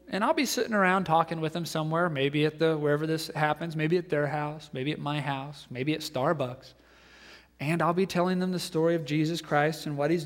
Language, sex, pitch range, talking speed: English, male, 140-175 Hz, 230 wpm